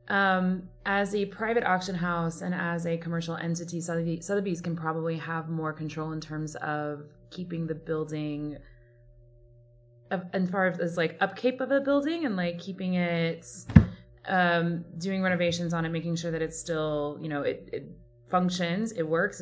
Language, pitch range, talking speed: English, 135-175 Hz, 165 wpm